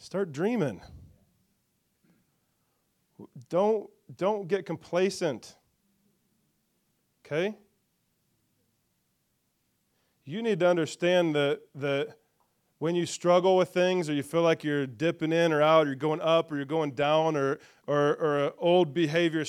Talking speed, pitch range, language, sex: 125 wpm, 150-200 Hz, English, male